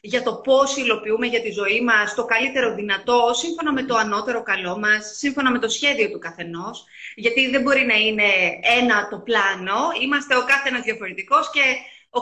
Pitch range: 220-275 Hz